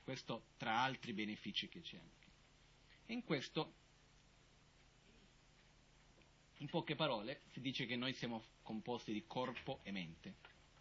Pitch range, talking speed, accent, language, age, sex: 110-160 Hz, 120 wpm, native, Italian, 40-59, male